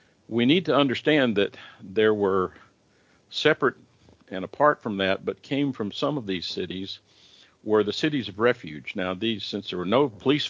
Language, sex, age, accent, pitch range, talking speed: English, male, 50-69, American, 95-125 Hz, 175 wpm